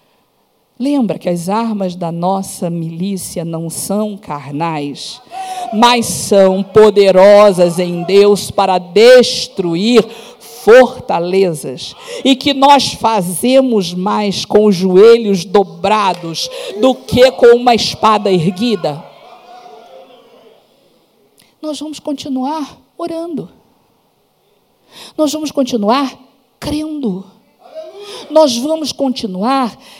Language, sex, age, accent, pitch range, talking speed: Portuguese, female, 50-69, Brazilian, 200-275 Hz, 85 wpm